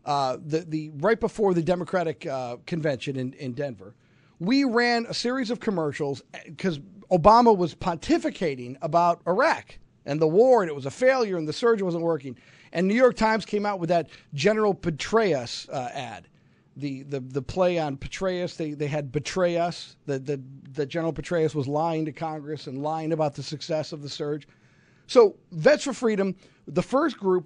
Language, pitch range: English, 155-245 Hz